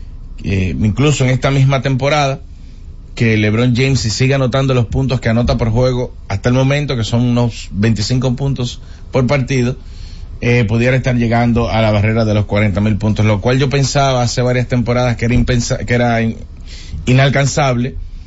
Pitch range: 95-130 Hz